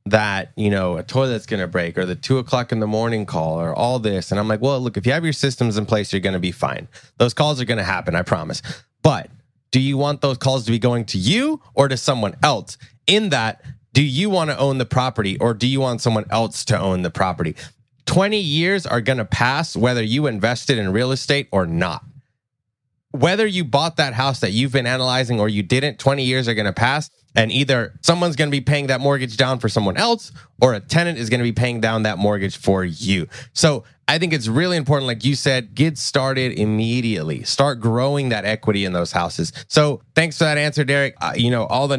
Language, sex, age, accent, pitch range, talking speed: English, male, 20-39, American, 110-140 Hz, 230 wpm